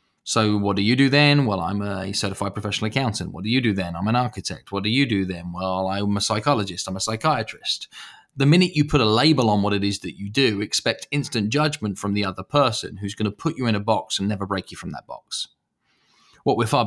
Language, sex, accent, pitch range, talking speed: English, male, British, 100-130 Hz, 245 wpm